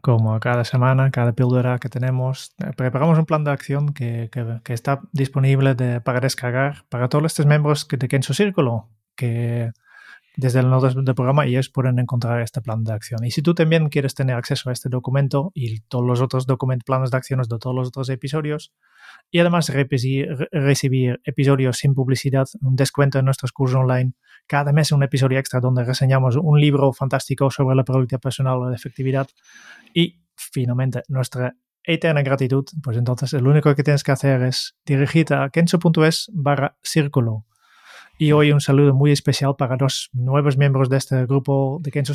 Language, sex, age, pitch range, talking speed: Spanish, male, 20-39, 130-145 Hz, 185 wpm